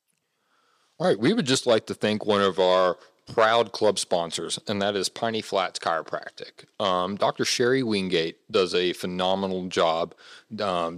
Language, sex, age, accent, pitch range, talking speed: English, male, 40-59, American, 90-110 Hz, 160 wpm